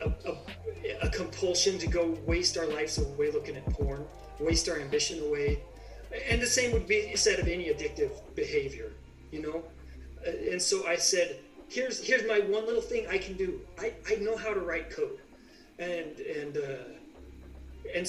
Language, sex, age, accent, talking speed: English, male, 30-49, American, 175 wpm